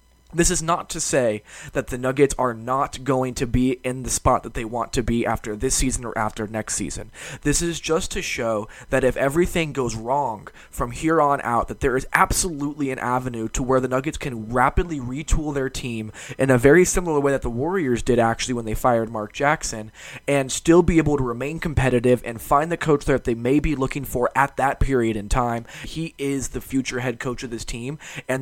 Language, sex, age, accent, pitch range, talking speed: English, male, 20-39, American, 120-145 Hz, 220 wpm